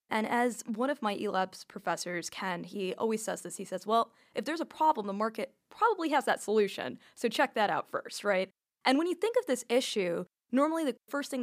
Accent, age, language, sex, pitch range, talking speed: American, 10-29, English, female, 195-265 Hz, 220 wpm